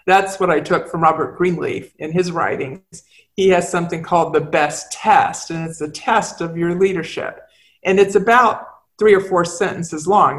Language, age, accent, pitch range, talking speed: English, 50-69, American, 165-200 Hz, 185 wpm